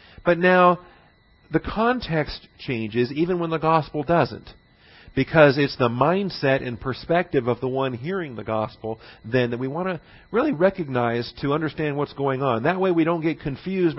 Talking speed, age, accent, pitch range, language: 170 wpm, 50-69, American, 130-170 Hz, English